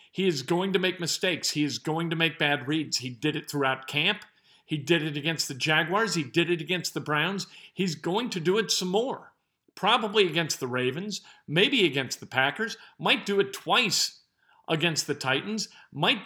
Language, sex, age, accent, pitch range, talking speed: English, male, 50-69, American, 160-220 Hz, 195 wpm